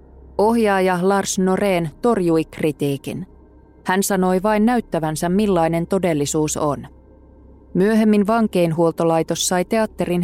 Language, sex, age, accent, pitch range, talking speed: Finnish, female, 20-39, native, 160-200 Hz, 95 wpm